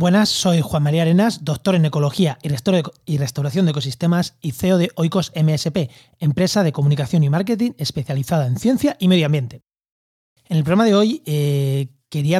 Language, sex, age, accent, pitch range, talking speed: Spanish, male, 30-49, Spanish, 145-190 Hz, 170 wpm